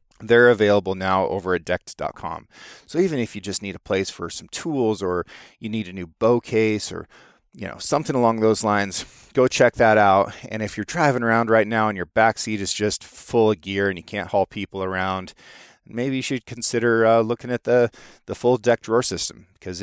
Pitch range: 105-120 Hz